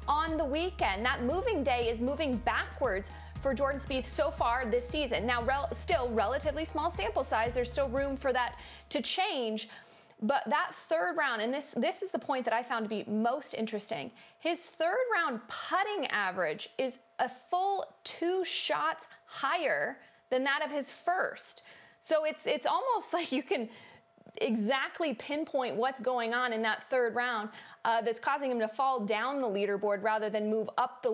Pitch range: 230-305 Hz